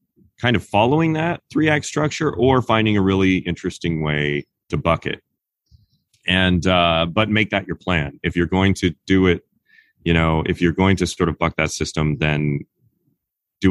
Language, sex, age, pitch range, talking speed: English, male, 30-49, 80-100 Hz, 185 wpm